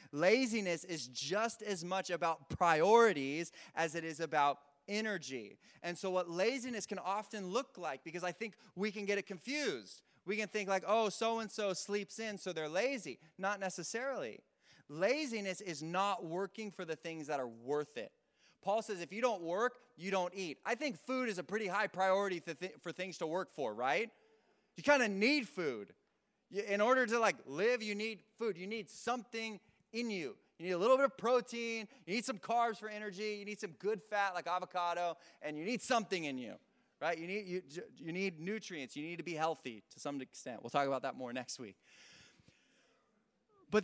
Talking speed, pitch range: 195 wpm, 170-225 Hz